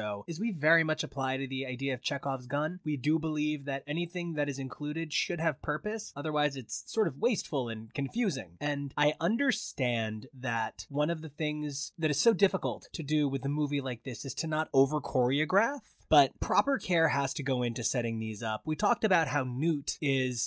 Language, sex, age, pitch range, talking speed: English, male, 20-39, 130-165 Hz, 200 wpm